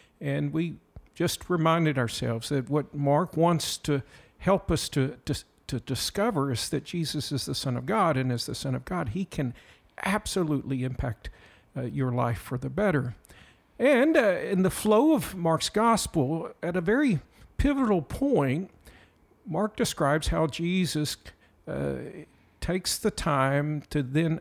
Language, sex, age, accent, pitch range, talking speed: English, male, 50-69, American, 130-180 Hz, 150 wpm